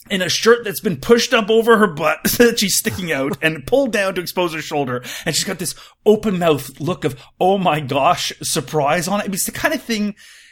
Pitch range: 140-215 Hz